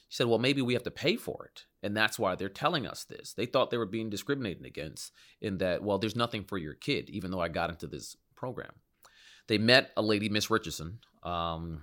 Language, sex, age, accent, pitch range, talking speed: English, male, 30-49, American, 90-115 Hz, 235 wpm